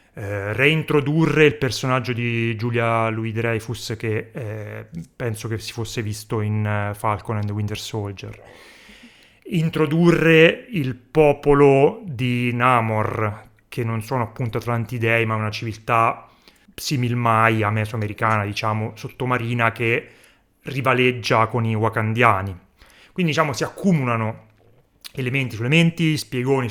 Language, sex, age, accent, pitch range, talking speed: Italian, male, 30-49, native, 115-150 Hz, 115 wpm